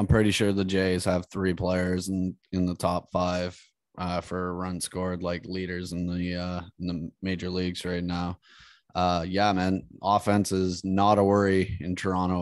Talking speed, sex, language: 185 wpm, male, English